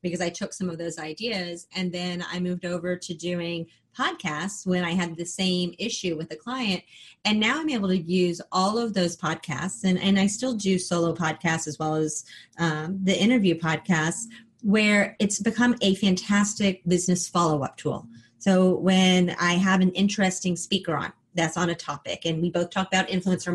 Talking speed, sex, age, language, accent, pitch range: 190 wpm, female, 30-49, English, American, 165-195 Hz